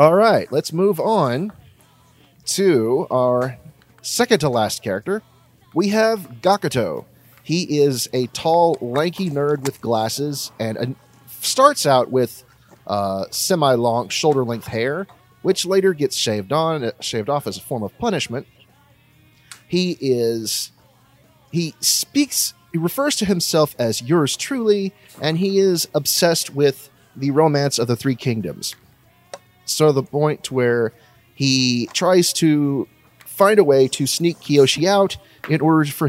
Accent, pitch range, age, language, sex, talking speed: American, 120-165 Hz, 30-49, English, male, 130 wpm